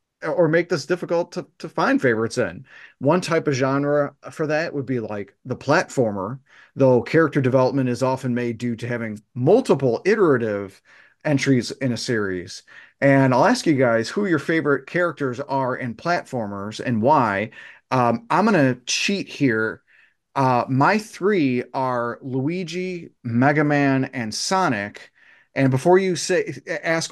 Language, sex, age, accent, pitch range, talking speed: English, male, 30-49, American, 120-150 Hz, 155 wpm